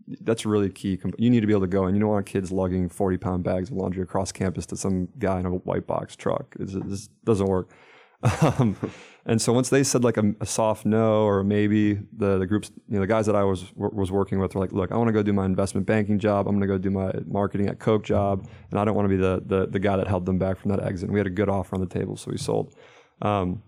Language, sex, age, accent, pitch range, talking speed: English, male, 20-39, American, 95-105 Hz, 290 wpm